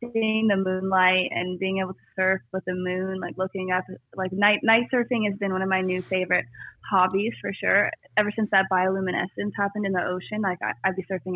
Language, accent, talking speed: English, American, 215 wpm